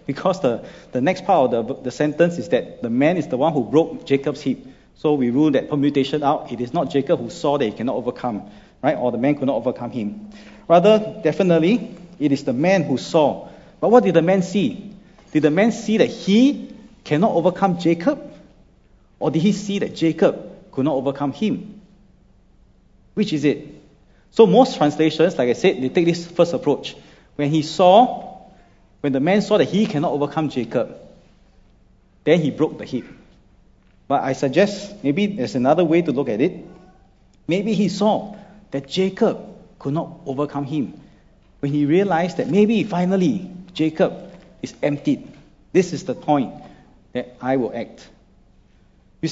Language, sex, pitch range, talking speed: English, male, 150-205 Hz, 175 wpm